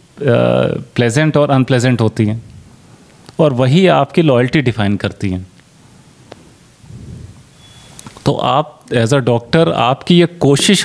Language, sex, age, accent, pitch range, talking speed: Hindi, male, 30-49, native, 120-145 Hz, 110 wpm